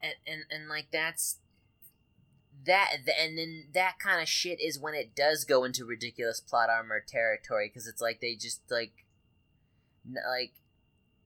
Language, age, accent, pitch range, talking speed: English, 20-39, American, 115-155 Hz, 160 wpm